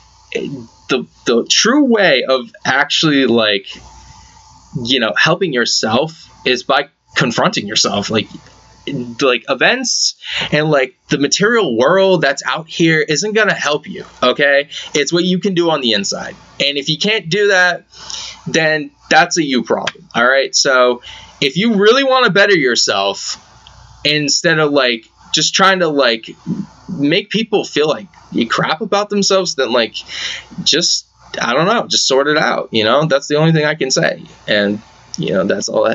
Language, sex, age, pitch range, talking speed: English, male, 20-39, 125-180 Hz, 165 wpm